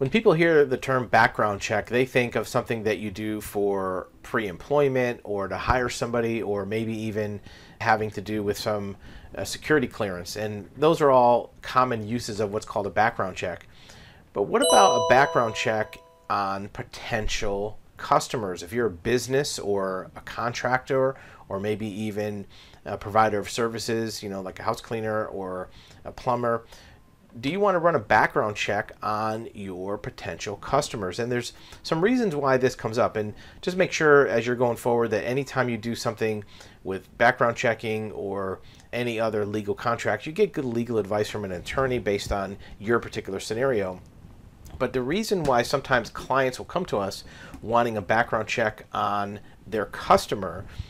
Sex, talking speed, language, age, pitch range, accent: male, 170 wpm, English, 30-49, 100-125 Hz, American